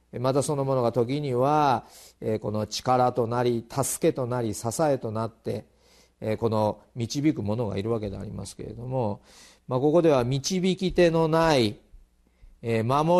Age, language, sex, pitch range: 40-59, Japanese, male, 110-145 Hz